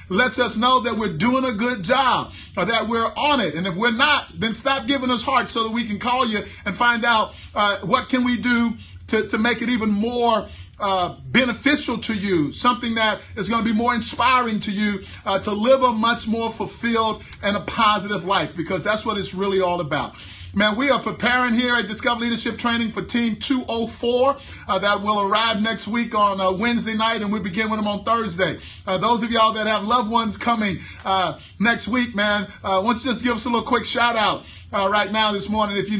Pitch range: 195-240 Hz